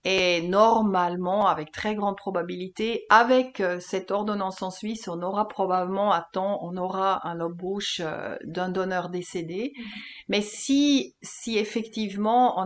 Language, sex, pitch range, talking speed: French, female, 180-215 Hz, 145 wpm